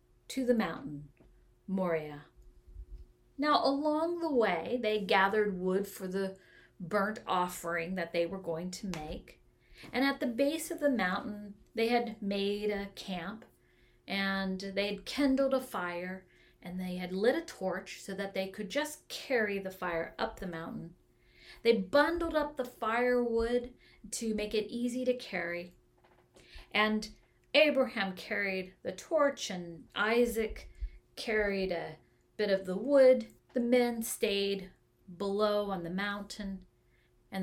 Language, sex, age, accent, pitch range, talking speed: English, female, 40-59, American, 170-245 Hz, 140 wpm